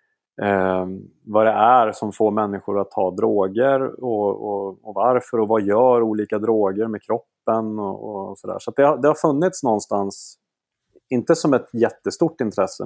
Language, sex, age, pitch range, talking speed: Swedish, male, 30-49, 100-115 Hz, 175 wpm